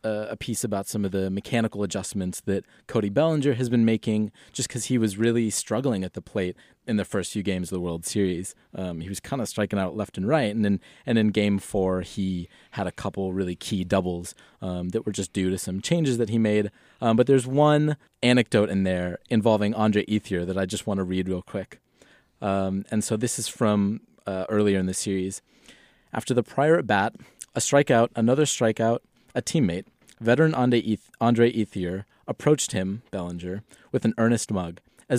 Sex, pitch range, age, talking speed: male, 95-120 Hz, 30-49, 200 wpm